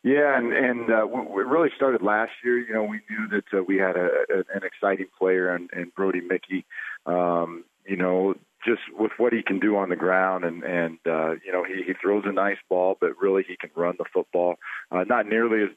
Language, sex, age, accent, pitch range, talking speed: English, male, 40-59, American, 90-105 Hz, 230 wpm